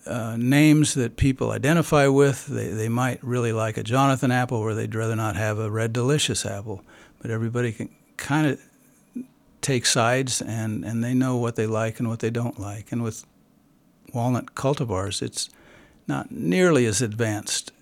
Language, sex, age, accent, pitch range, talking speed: English, male, 60-79, American, 110-130 Hz, 170 wpm